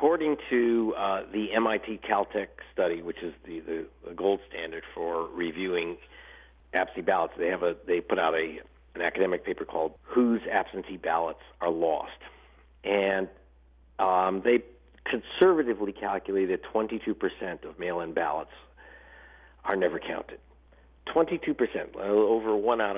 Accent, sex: American, male